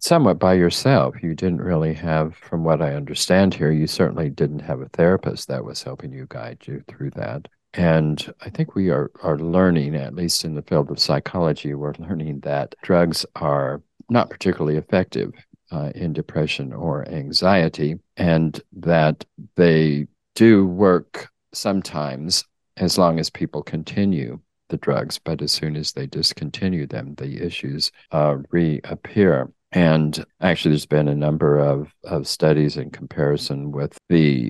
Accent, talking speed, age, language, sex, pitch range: American, 155 wpm, 50-69, English, male, 70-85 Hz